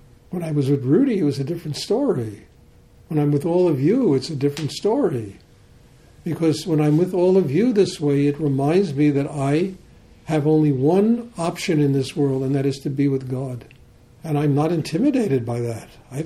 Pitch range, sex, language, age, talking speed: 135-180 Hz, male, English, 60-79, 205 wpm